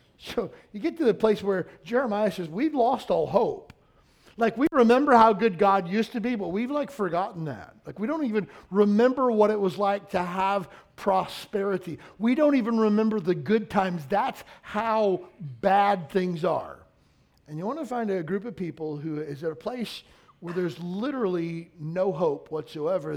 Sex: male